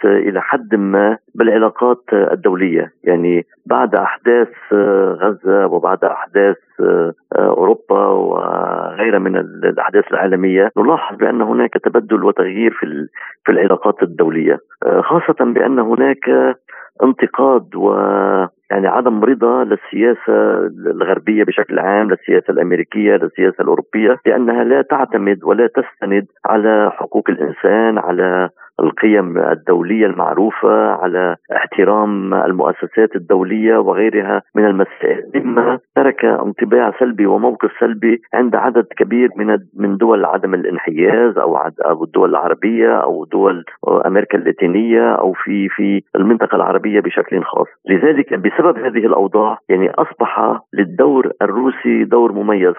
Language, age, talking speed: Arabic, 50-69, 110 wpm